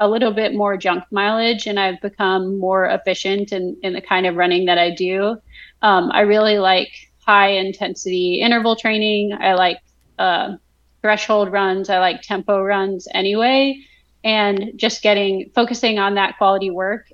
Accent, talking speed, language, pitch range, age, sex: American, 160 wpm, English, 190-225 Hz, 30-49, female